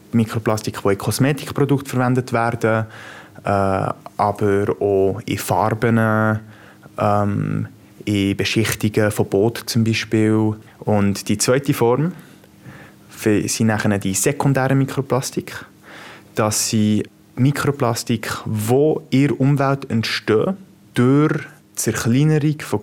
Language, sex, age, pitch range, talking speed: German, male, 20-39, 105-125 Hz, 100 wpm